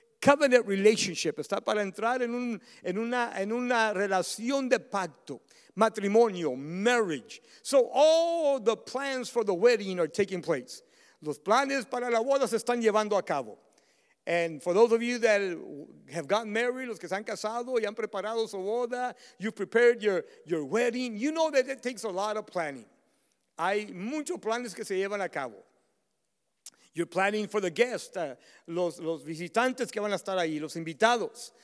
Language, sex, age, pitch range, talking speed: English, male, 50-69, 195-255 Hz, 175 wpm